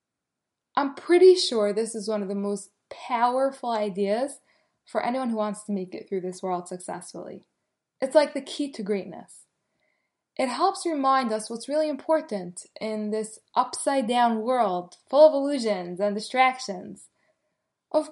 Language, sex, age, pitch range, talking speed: English, female, 10-29, 200-270 Hz, 150 wpm